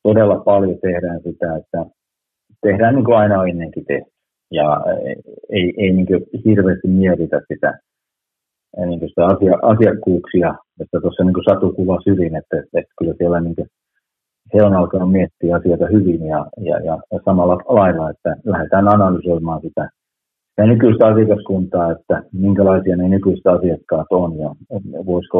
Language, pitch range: Finnish, 85-100 Hz